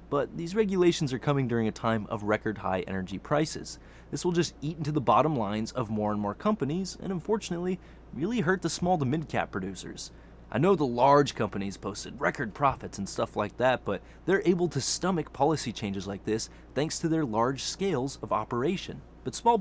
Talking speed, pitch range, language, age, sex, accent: 200 wpm, 105-170 Hz, English, 20-39, male, American